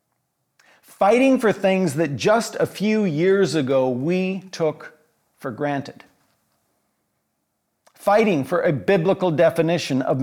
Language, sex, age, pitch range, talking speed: English, male, 50-69, 145-200 Hz, 110 wpm